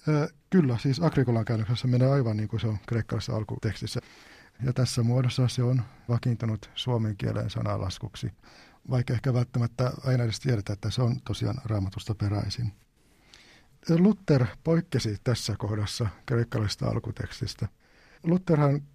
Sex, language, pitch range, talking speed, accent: male, Finnish, 110-130 Hz, 125 wpm, native